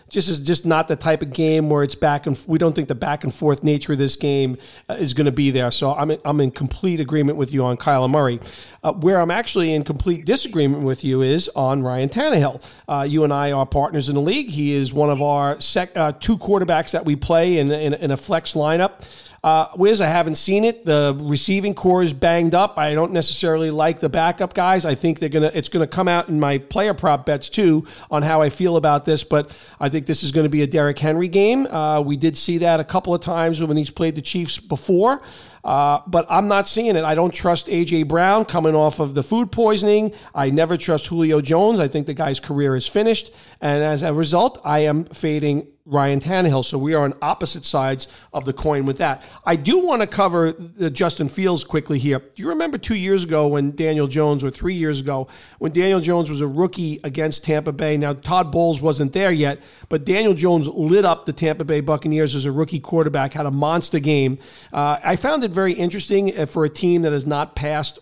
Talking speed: 230 wpm